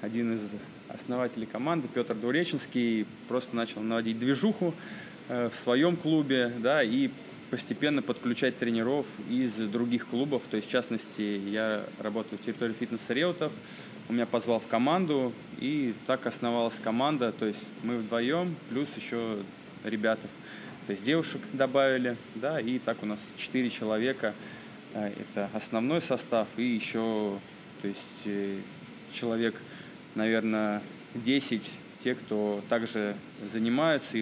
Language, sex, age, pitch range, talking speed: Russian, male, 20-39, 105-125 Hz, 125 wpm